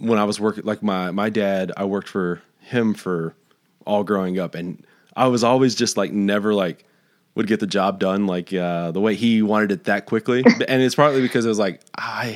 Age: 20-39